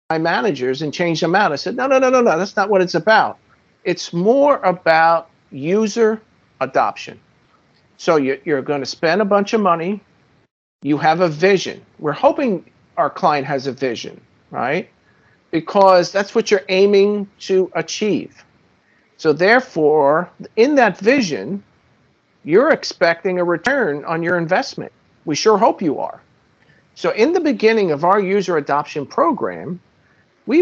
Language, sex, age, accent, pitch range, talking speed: English, male, 50-69, American, 165-220 Hz, 155 wpm